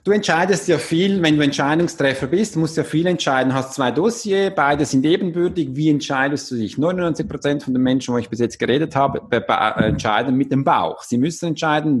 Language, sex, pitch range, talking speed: German, male, 140-185 Hz, 205 wpm